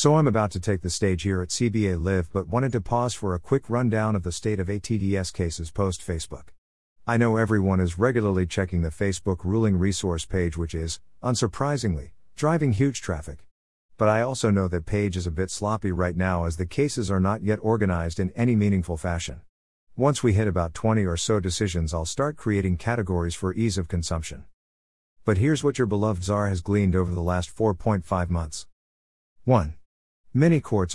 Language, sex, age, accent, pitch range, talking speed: English, male, 50-69, American, 90-110 Hz, 190 wpm